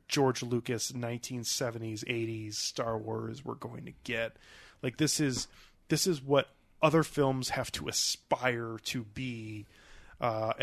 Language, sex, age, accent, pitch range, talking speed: English, male, 30-49, American, 115-145 Hz, 135 wpm